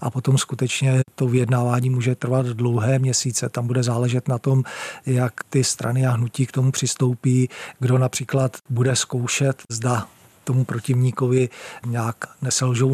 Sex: male